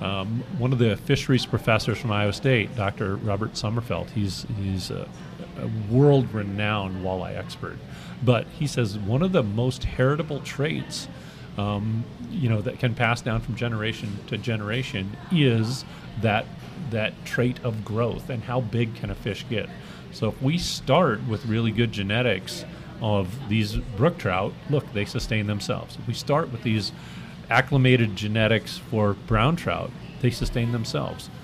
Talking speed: 155 wpm